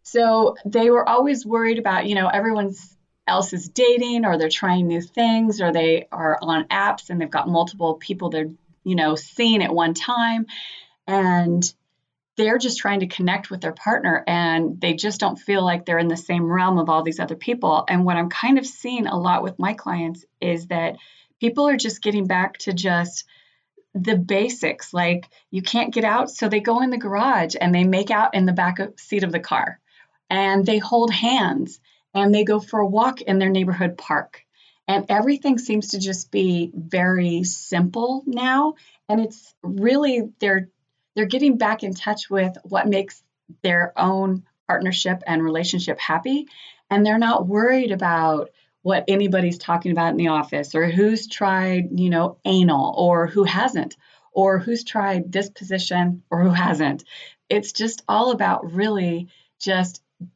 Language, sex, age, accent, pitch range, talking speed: English, female, 30-49, American, 175-220 Hz, 180 wpm